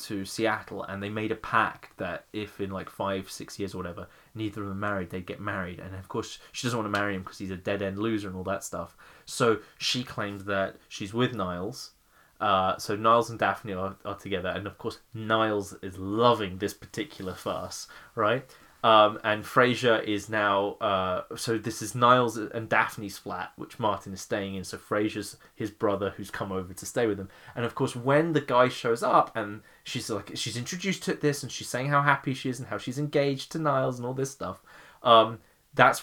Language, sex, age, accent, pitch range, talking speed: English, male, 20-39, British, 100-130 Hz, 215 wpm